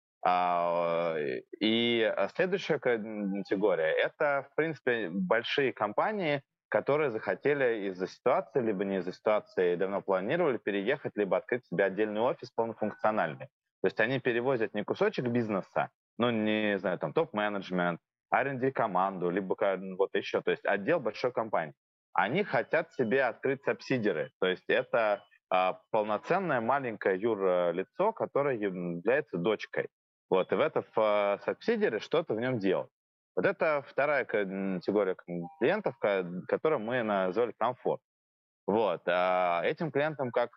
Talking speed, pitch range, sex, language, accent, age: 120 wpm, 95-140 Hz, male, Russian, native, 20-39